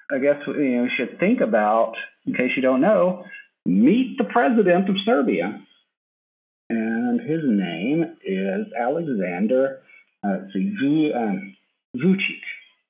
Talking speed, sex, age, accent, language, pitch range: 115 wpm, male, 50-69, American, English, 130-205 Hz